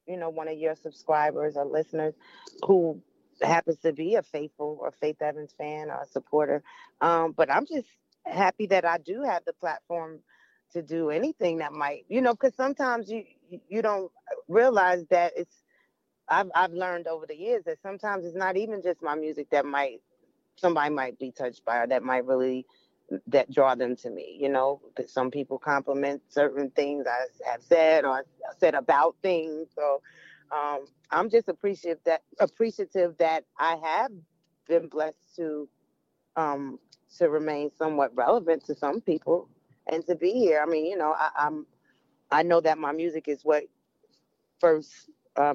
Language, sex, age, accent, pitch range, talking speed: English, female, 30-49, American, 145-180 Hz, 175 wpm